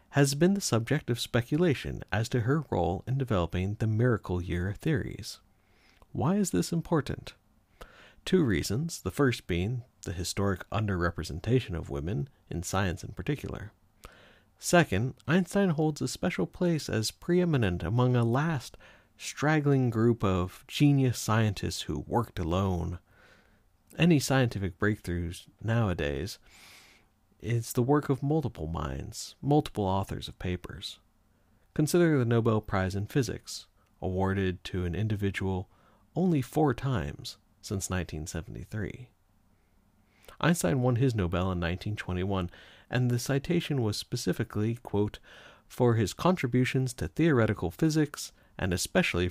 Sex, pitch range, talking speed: male, 95-130 Hz, 125 wpm